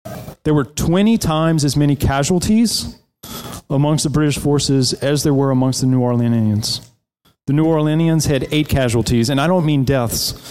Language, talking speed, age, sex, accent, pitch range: English, 165 wpm, 30-49, male, American, 120-155 Hz